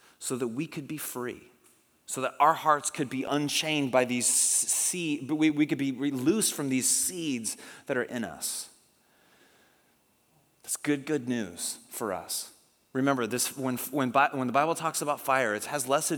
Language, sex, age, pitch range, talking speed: English, male, 30-49, 120-160 Hz, 185 wpm